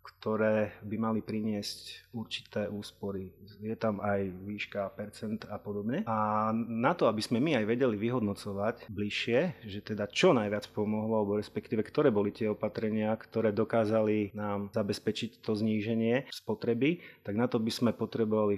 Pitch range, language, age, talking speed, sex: 105-115 Hz, Slovak, 30-49, 150 wpm, male